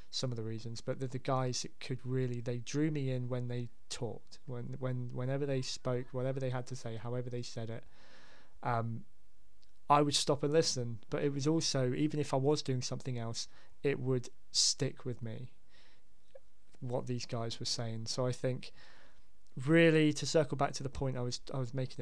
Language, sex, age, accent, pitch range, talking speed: English, male, 20-39, British, 120-135 Hz, 200 wpm